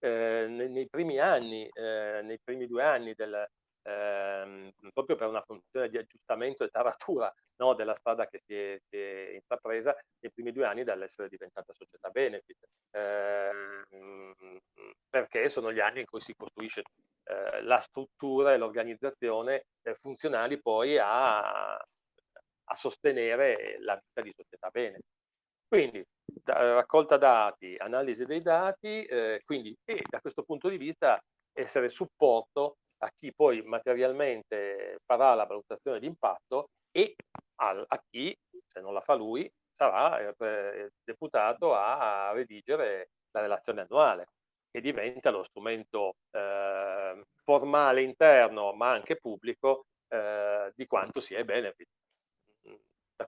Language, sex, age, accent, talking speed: Italian, male, 40-59, native, 130 wpm